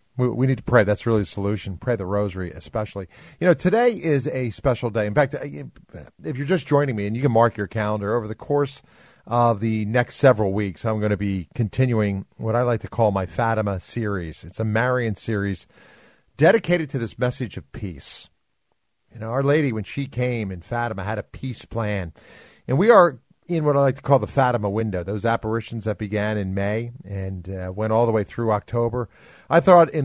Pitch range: 105-130 Hz